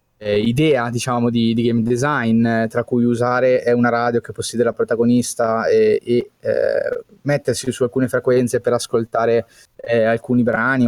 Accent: native